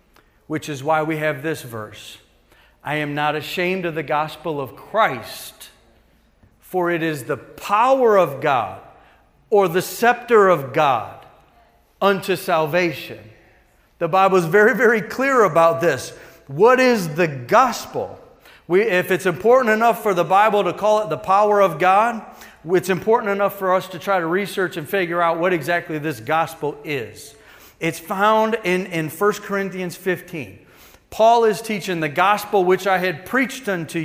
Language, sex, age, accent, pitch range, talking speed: English, male, 40-59, American, 165-210 Hz, 160 wpm